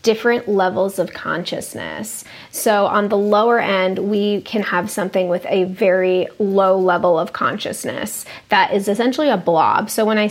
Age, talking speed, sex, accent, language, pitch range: 20-39, 165 wpm, female, American, English, 195-215 Hz